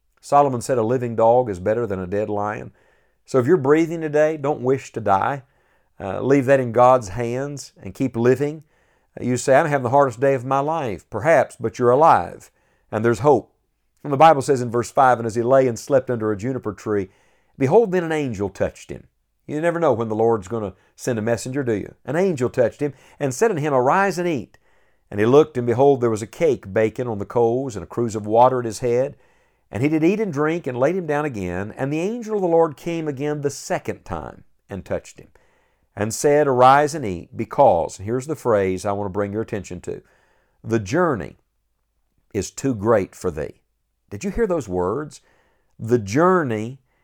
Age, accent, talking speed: 50-69, American, 215 wpm